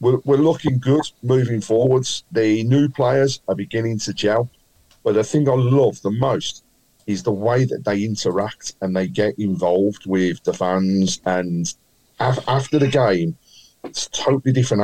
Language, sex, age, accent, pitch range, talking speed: English, male, 40-59, British, 100-130 Hz, 160 wpm